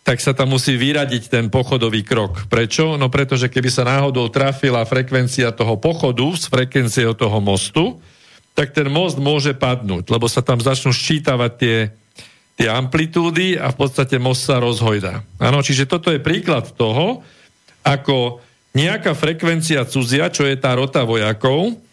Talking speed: 155 wpm